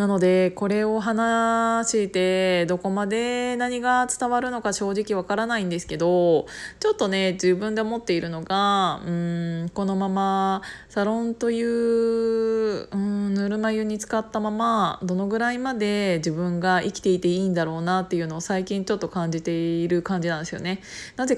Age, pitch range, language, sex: 20-39, 175-230 Hz, Japanese, female